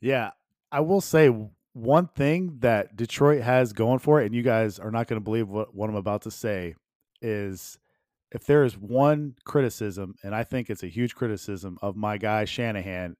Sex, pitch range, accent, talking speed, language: male, 110-140 Hz, American, 195 wpm, English